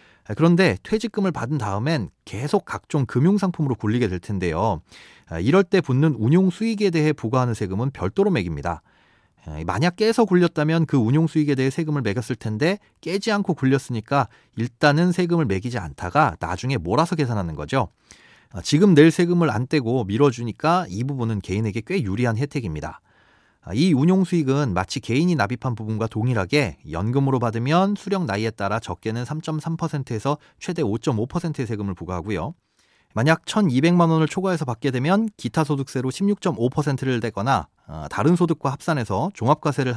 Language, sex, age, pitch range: Korean, male, 30-49, 115-170 Hz